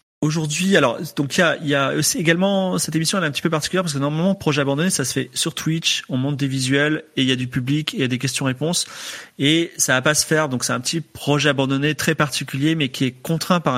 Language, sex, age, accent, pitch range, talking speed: French, male, 30-49, French, 120-155 Hz, 280 wpm